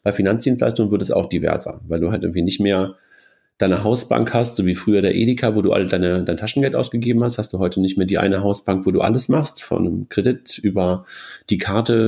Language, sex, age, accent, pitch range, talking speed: German, male, 40-59, German, 100-120 Hz, 230 wpm